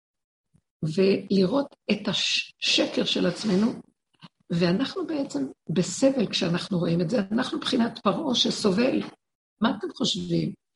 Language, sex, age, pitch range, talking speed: Hebrew, female, 50-69, 185-240 Hz, 105 wpm